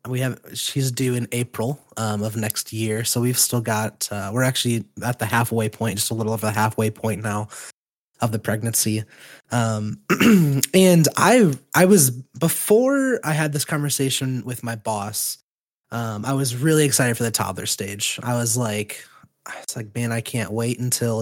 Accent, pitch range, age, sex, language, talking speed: American, 110-135 Hz, 20-39, male, English, 185 wpm